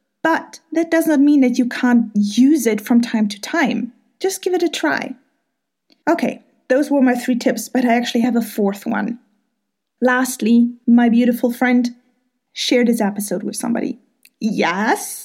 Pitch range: 235-295 Hz